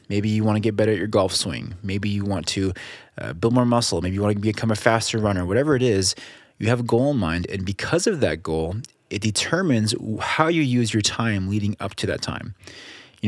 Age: 20-39